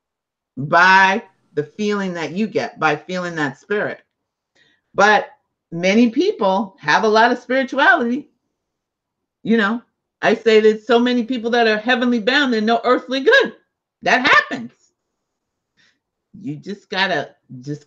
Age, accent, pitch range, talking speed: 50-69, American, 160-230 Hz, 135 wpm